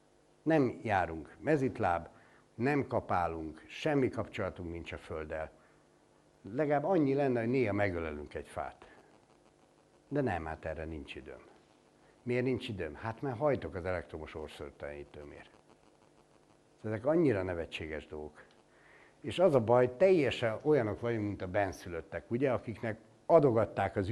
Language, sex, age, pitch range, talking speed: Hungarian, male, 60-79, 95-130 Hz, 125 wpm